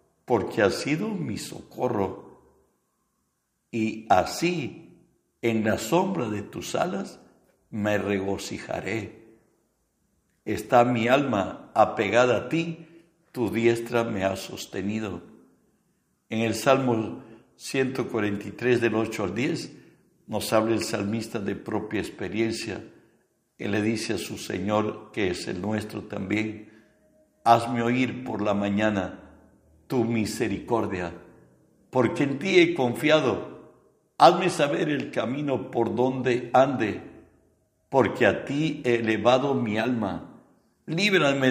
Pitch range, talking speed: 110-125 Hz, 115 wpm